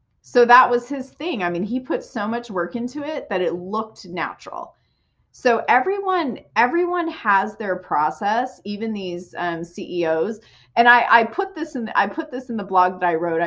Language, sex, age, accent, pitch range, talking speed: English, female, 30-49, American, 175-240 Hz, 190 wpm